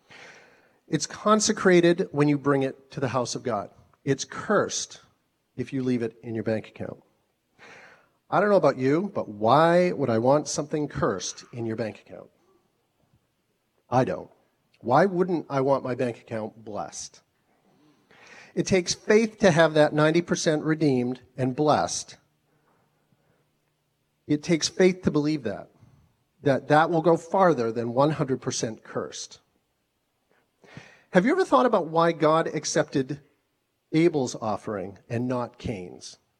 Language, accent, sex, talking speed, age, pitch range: English, American, male, 140 wpm, 40-59, 130-180 Hz